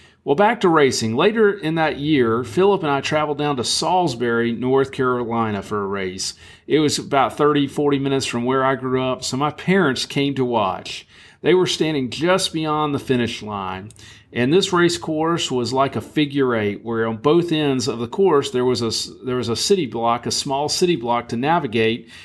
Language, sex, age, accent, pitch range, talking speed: English, male, 50-69, American, 115-140 Hz, 200 wpm